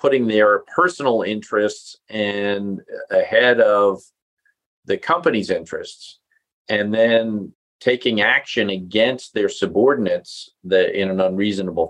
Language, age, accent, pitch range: English, 40-59, American, 95-135 Hz